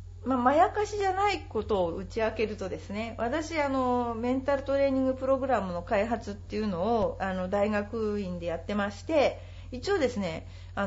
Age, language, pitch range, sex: 40-59, Japanese, 175-290 Hz, female